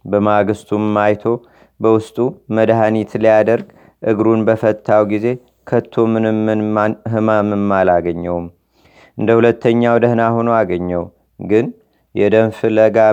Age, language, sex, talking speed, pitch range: 30-49, Amharic, male, 85 wpm, 105-115 Hz